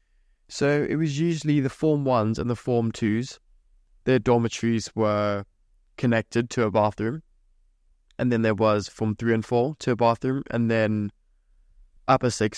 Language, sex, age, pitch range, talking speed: English, male, 20-39, 95-125 Hz, 155 wpm